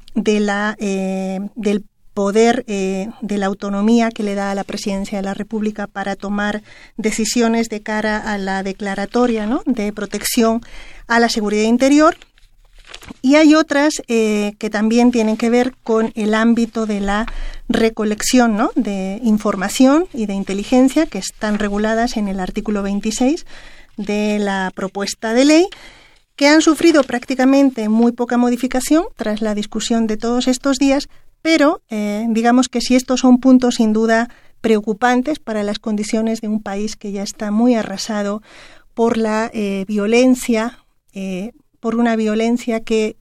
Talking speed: 150 wpm